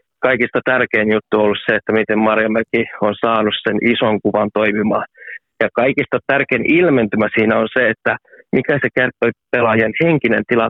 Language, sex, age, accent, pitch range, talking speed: Finnish, male, 30-49, native, 110-125 Hz, 155 wpm